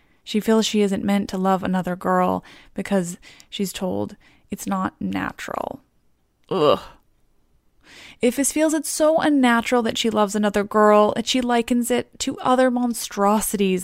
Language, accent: English, American